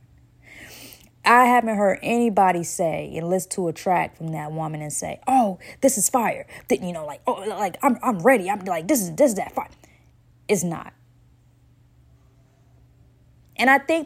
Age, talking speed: 20-39, 165 wpm